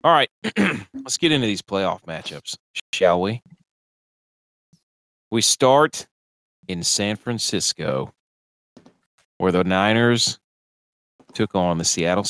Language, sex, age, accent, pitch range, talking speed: English, male, 40-59, American, 95-125 Hz, 105 wpm